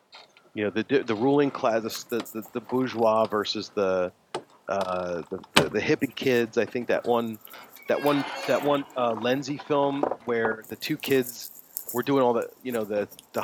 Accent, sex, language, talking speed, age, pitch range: American, male, English, 185 wpm, 40-59, 100-120 Hz